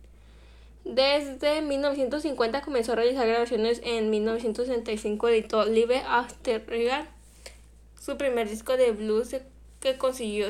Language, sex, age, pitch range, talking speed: Spanish, female, 10-29, 230-265 Hz, 110 wpm